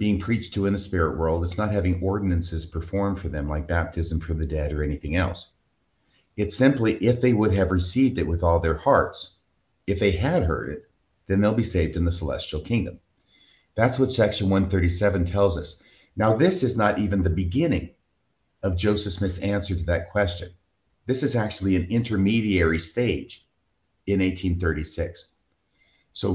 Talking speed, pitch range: 175 wpm, 85-105 Hz